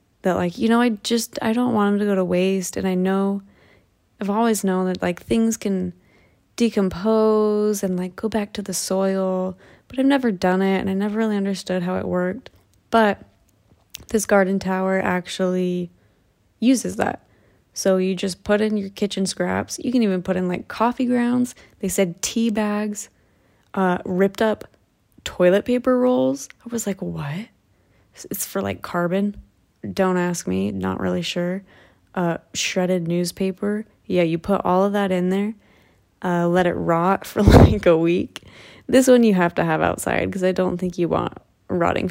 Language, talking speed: English, 180 wpm